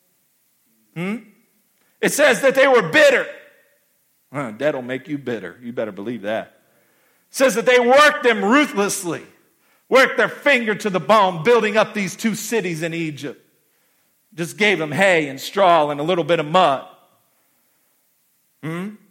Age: 50-69